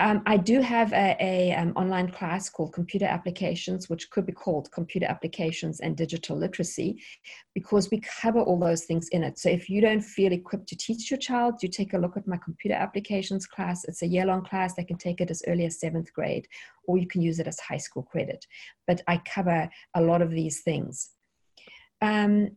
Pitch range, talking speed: 175-215 Hz, 205 wpm